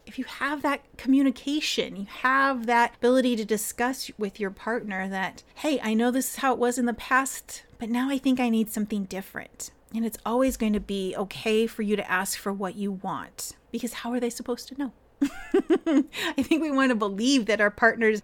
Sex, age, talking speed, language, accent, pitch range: female, 30-49, 215 wpm, English, American, 205-255 Hz